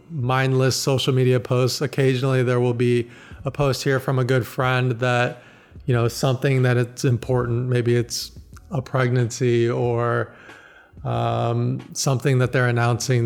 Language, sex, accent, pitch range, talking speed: English, male, American, 125-150 Hz, 145 wpm